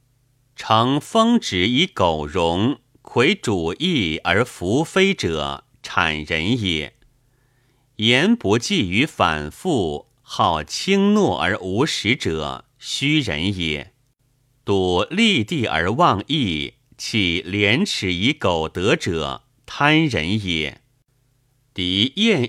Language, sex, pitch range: Chinese, male, 95-135 Hz